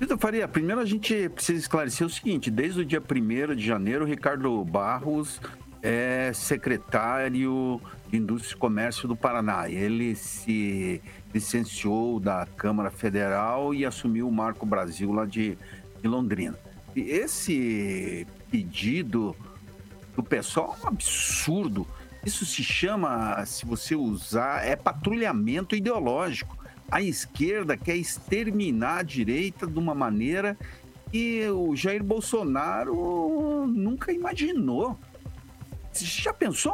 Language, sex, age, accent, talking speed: Portuguese, male, 60-79, Brazilian, 120 wpm